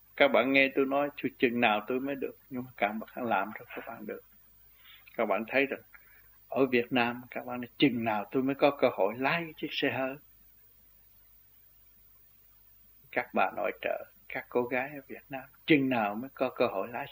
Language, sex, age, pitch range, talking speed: Vietnamese, male, 60-79, 105-155 Hz, 195 wpm